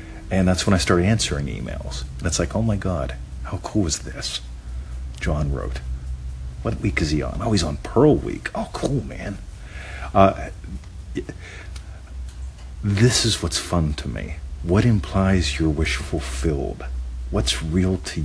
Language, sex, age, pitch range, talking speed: English, male, 50-69, 70-100 Hz, 150 wpm